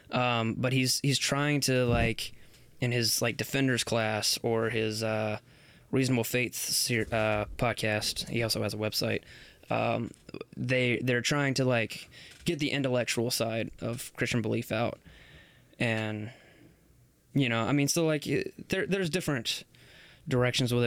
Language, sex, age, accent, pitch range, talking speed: English, male, 20-39, American, 115-140 Hz, 140 wpm